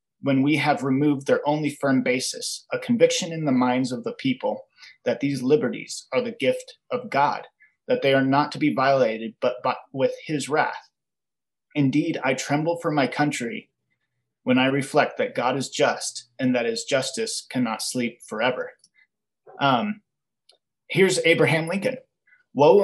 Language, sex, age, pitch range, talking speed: English, male, 30-49, 130-190 Hz, 160 wpm